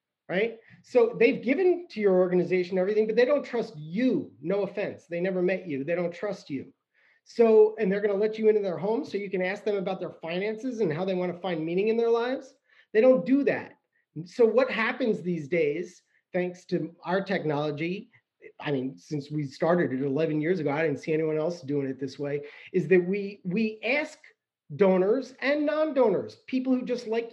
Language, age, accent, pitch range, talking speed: English, 40-59, American, 175-250 Hz, 205 wpm